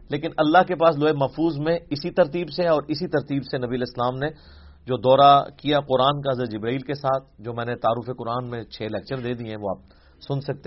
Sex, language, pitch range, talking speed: male, English, 110-155 Hz, 235 wpm